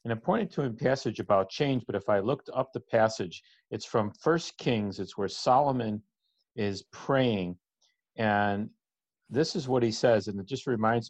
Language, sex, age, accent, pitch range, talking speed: English, male, 50-69, American, 100-125 Hz, 185 wpm